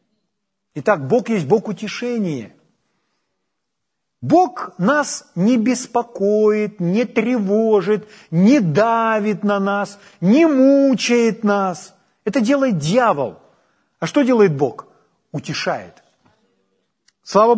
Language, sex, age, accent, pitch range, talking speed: Ukrainian, male, 40-59, native, 180-245 Hz, 90 wpm